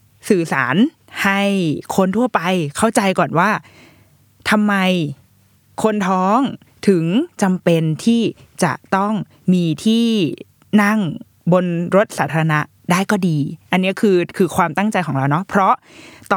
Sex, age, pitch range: female, 20-39, 155-205 Hz